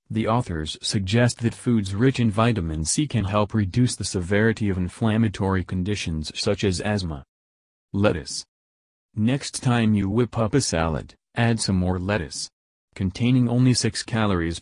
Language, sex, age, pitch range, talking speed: English, male, 40-59, 90-115 Hz, 150 wpm